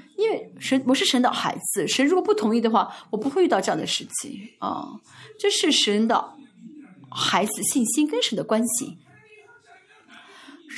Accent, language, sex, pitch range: native, Chinese, female, 230-340 Hz